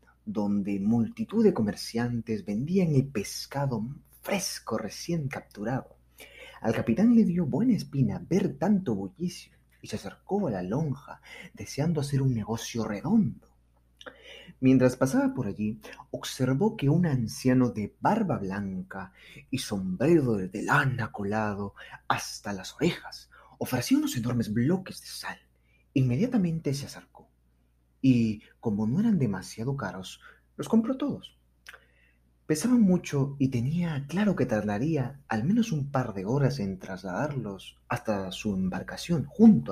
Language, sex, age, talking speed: Spanish, male, 30-49, 130 wpm